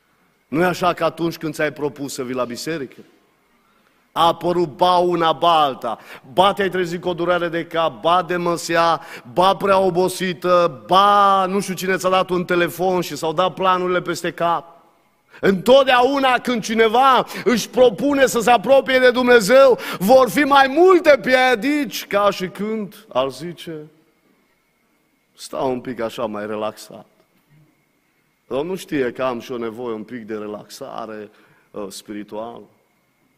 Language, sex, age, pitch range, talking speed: Romanian, male, 30-49, 140-190 Hz, 155 wpm